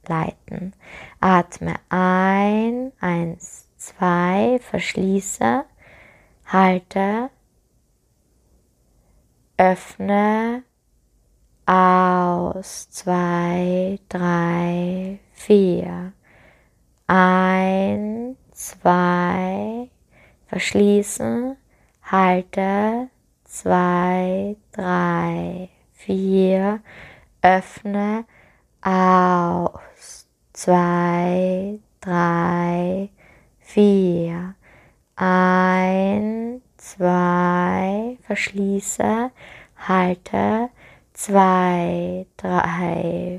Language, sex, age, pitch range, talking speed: German, female, 20-39, 180-200 Hz, 40 wpm